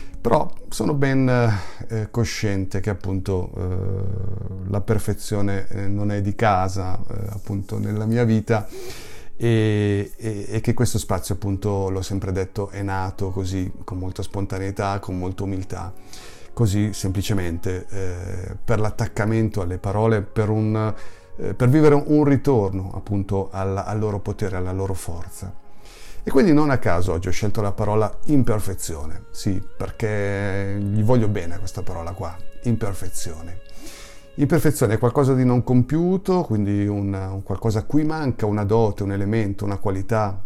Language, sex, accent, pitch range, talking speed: Italian, male, native, 95-115 Hz, 145 wpm